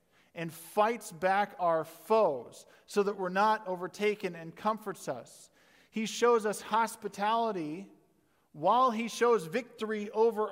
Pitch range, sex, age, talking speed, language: 140-190 Hz, male, 40-59, 125 wpm, English